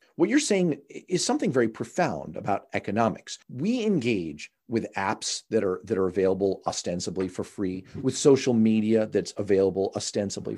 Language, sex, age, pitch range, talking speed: English, male, 40-59, 115-165 Hz, 155 wpm